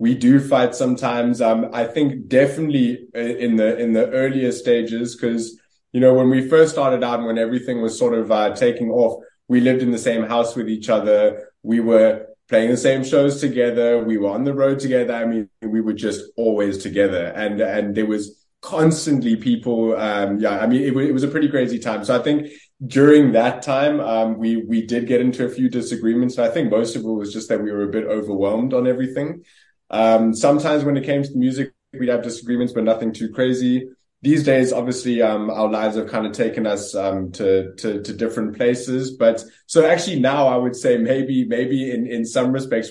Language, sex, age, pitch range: English, male, 20-39, 110-135 Hz